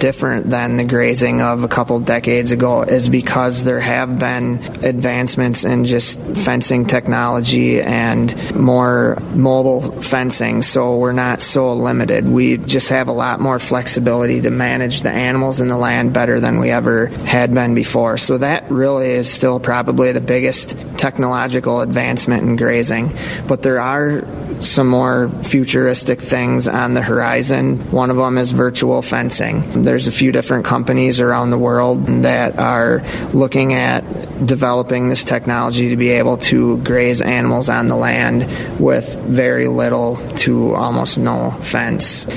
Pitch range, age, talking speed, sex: 115-125 Hz, 30-49, 155 wpm, male